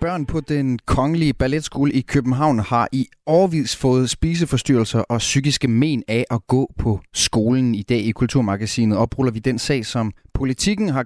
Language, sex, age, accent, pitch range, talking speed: Danish, male, 30-49, native, 110-140 Hz, 170 wpm